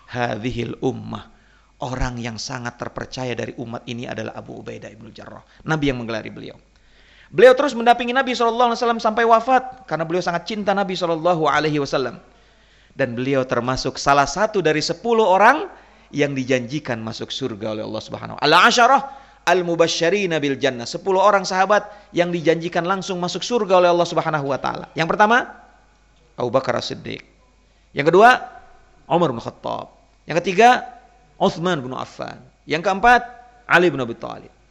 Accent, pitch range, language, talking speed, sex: native, 130-220 Hz, Indonesian, 155 wpm, male